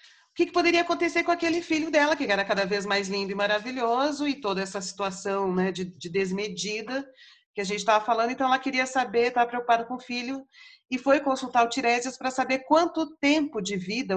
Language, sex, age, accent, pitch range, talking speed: Portuguese, female, 40-59, Brazilian, 185-260 Hz, 210 wpm